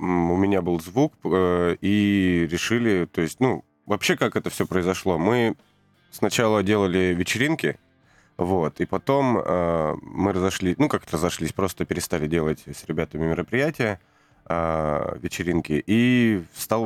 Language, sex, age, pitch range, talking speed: Russian, male, 30-49, 80-110 Hz, 125 wpm